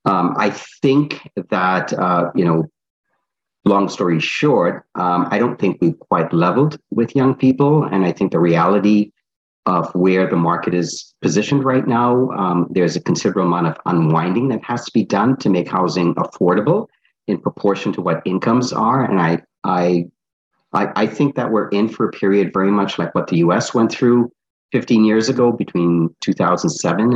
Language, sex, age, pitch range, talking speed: English, male, 40-59, 85-120 Hz, 175 wpm